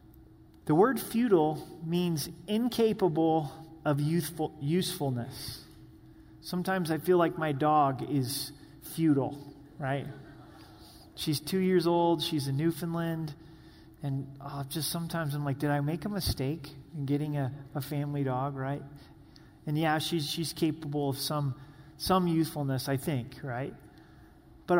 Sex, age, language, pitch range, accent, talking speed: male, 30-49, English, 140-175 Hz, American, 135 wpm